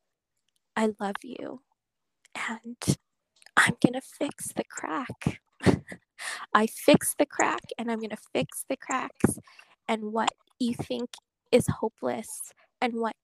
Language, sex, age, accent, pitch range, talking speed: English, female, 10-29, American, 210-240 Hz, 130 wpm